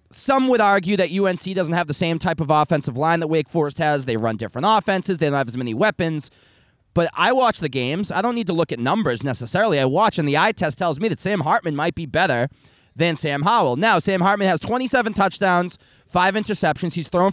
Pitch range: 145-195 Hz